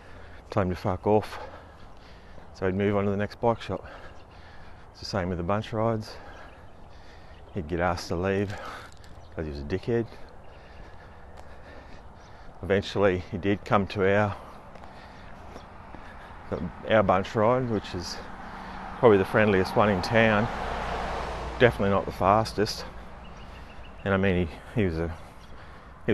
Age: 30-49